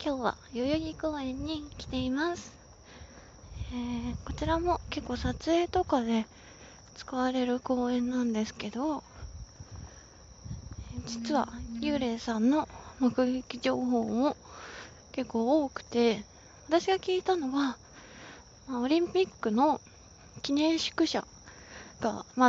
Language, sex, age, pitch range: Japanese, female, 20-39, 230-295 Hz